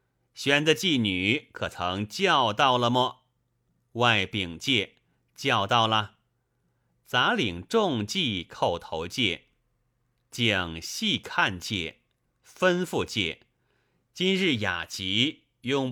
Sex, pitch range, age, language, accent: male, 105-140 Hz, 30-49, Chinese, native